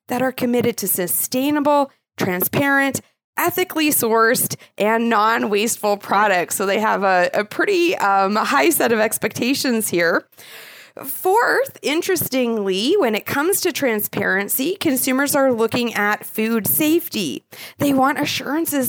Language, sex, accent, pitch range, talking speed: English, female, American, 195-275 Hz, 125 wpm